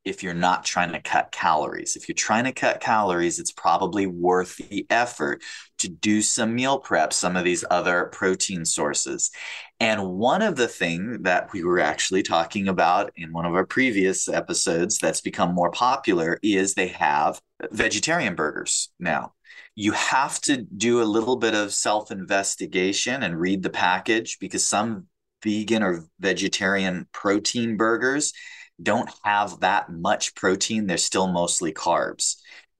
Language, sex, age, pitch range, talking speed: English, male, 30-49, 90-110 Hz, 155 wpm